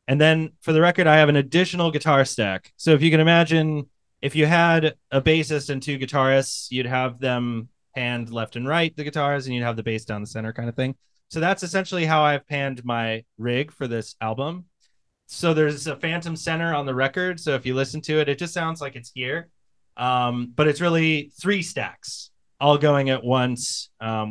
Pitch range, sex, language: 120-155 Hz, male, English